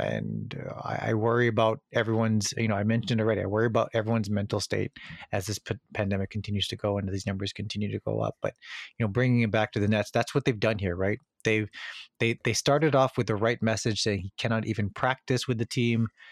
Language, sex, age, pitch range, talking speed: English, male, 30-49, 105-130 Hz, 225 wpm